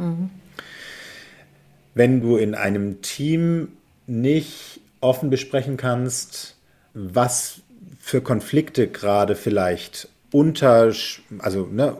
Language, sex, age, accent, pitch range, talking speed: German, male, 40-59, German, 105-140 Hz, 75 wpm